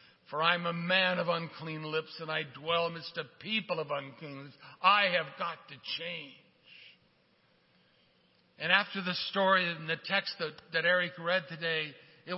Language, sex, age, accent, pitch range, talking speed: English, male, 60-79, American, 150-185 Hz, 165 wpm